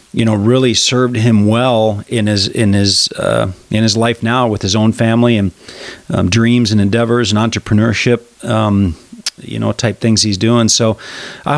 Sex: male